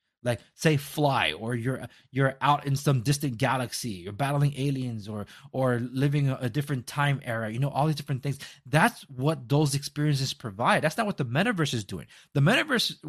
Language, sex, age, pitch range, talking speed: English, male, 30-49, 130-155 Hz, 190 wpm